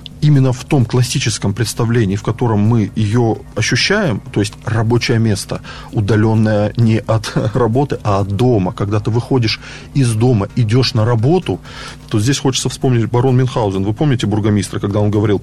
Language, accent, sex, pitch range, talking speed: Russian, native, male, 115-145 Hz, 160 wpm